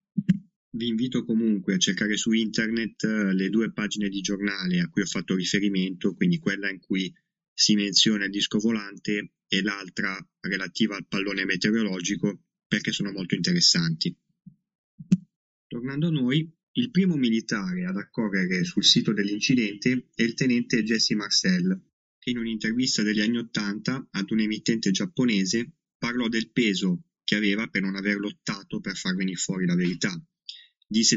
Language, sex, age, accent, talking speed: Italian, male, 20-39, native, 150 wpm